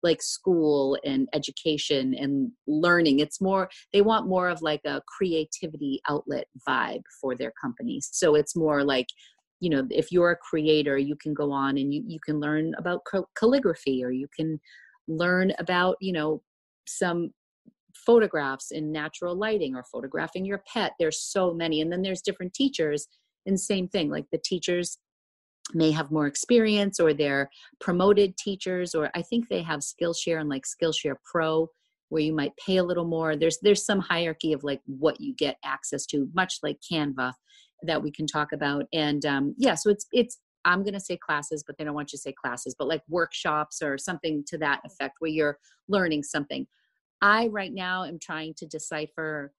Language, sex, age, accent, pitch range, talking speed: English, female, 30-49, American, 150-185 Hz, 185 wpm